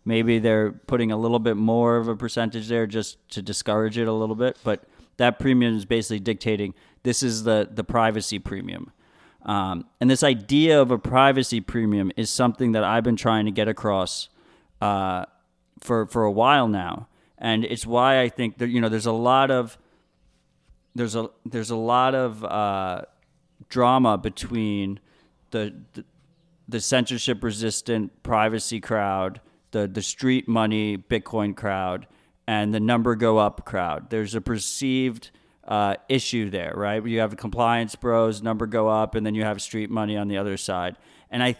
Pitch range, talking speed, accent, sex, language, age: 105-120 Hz, 170 wpm, American, male, English, 30-49